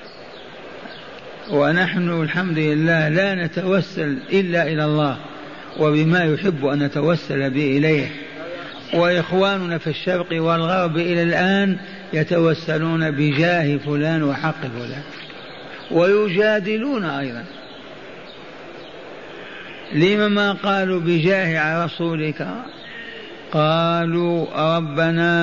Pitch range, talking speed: 150-180 Hz, 75 wpm